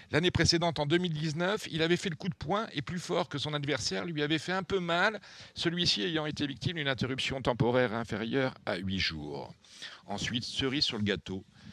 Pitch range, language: 120-160 Hz, French